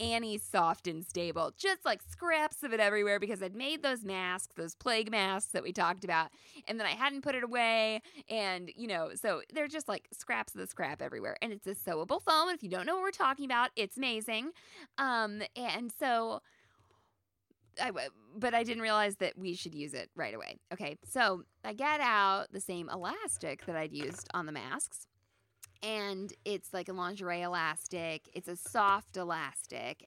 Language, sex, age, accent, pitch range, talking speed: English, female, 20-39, American, 180-250 Hz, 190 wpm